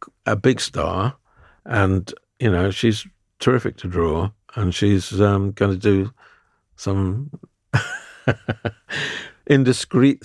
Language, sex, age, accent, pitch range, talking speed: English, male, 50-69, British, 90-120 Hz, 105 wpm